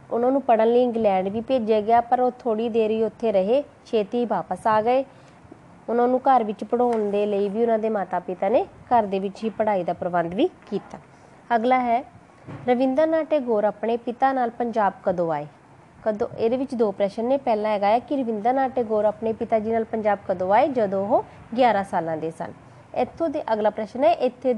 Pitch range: 210-255 Hz